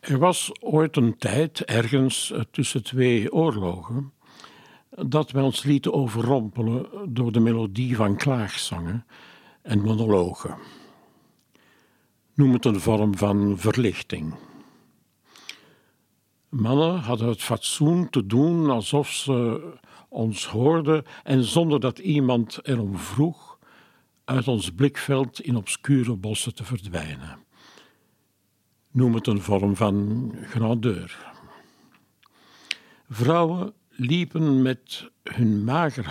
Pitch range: 110-140 Hz